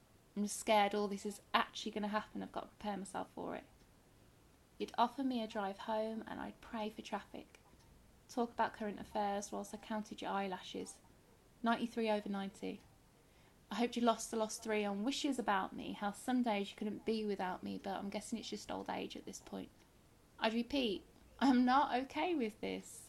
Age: 20-39